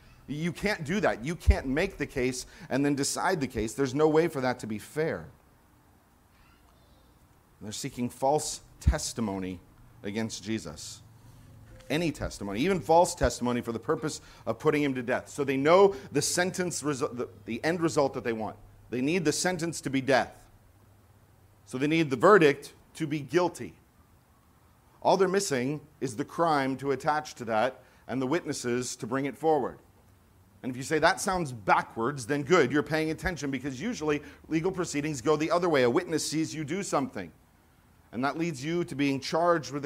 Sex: male